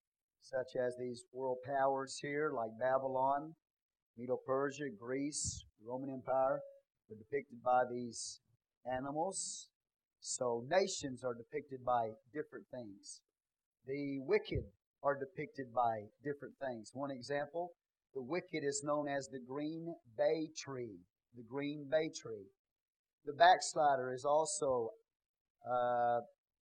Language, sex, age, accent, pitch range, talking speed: English, male, 40-59, American, 125-155 Hz, 115 wpm